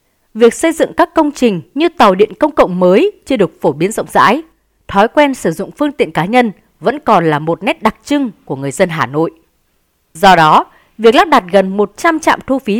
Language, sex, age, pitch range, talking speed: Vietnamese, female, 20-39, 185-280 Hz, 225 wpm